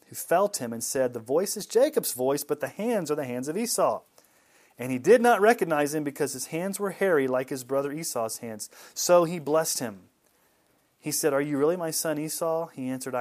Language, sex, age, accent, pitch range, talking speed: English, male, 30-49, American, 125-175 Hz, 220 wpm